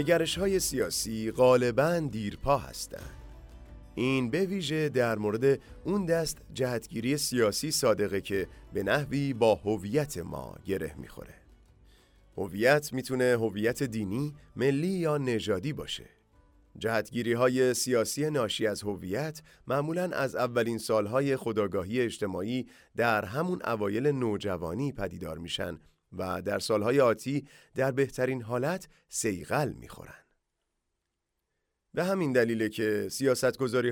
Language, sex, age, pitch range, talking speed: English, male, 30-49, 105-145 Hz, 115 wpm